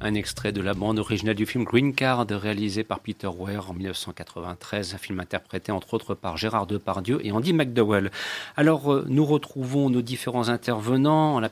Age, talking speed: 40-59, 175 wpm